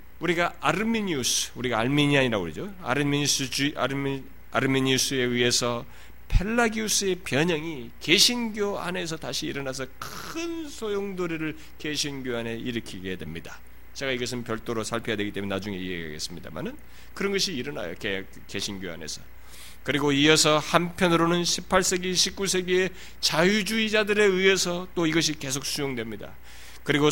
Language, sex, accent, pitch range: Korean, male, native, 125-185 Hz